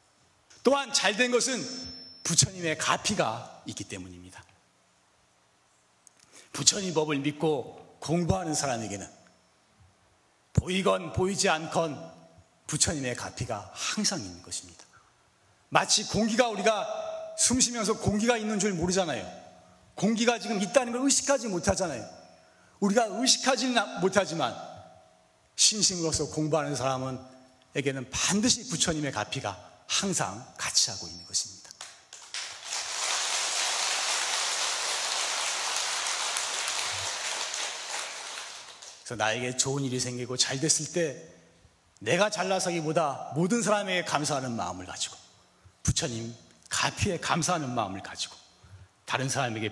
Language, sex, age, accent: Korean, male, 40-59, native